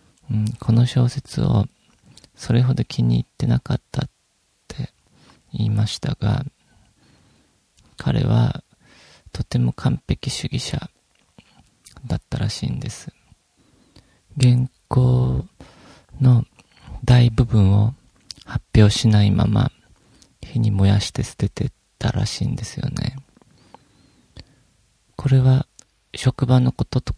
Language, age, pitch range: Japanese, 40-59, 105-125 Hz